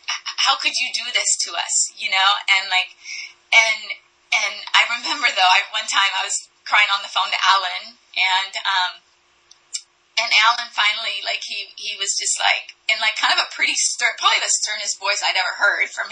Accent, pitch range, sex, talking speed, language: American, 195-230 Hz, female, 195 wpm, English